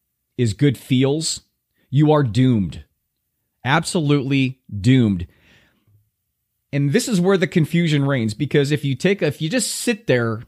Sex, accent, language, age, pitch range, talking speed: male, American, English, 30-49, 120-155 Hz, 145 wpm